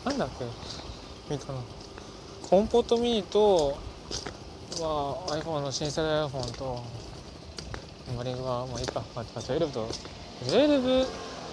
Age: 20-39